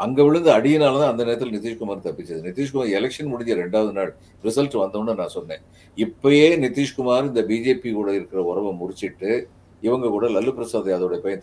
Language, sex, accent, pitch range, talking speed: Tamil, male, native, 100-140 Hz, 165 wpm